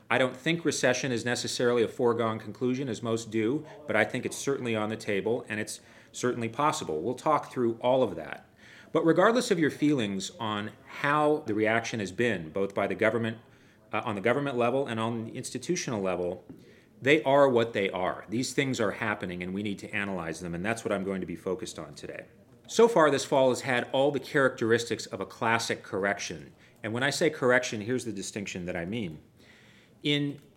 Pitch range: 110-135 Hz